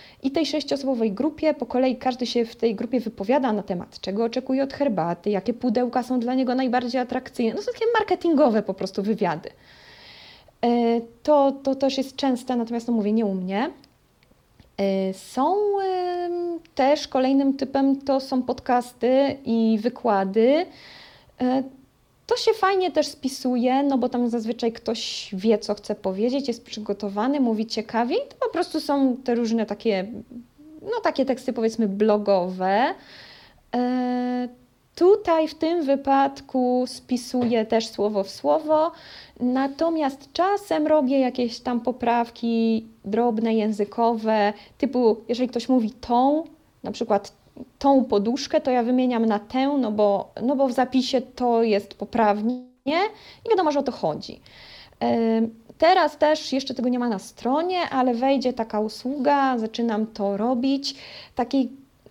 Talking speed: 140 wpm